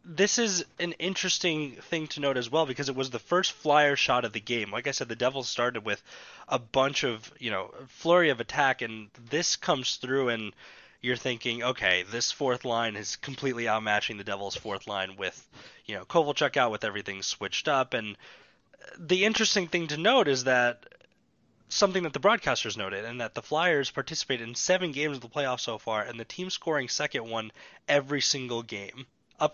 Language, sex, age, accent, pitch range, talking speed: English, male, 20-39, American, 115-150 Hz, 195 wpm